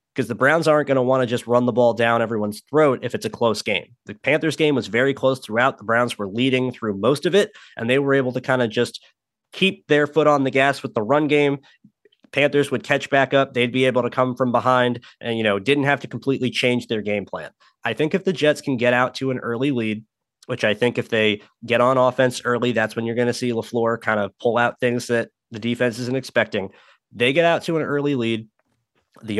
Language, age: English, 20-39